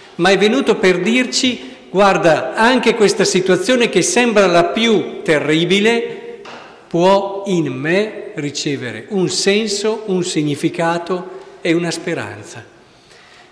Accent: native